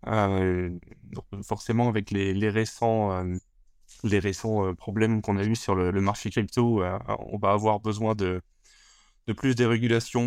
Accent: French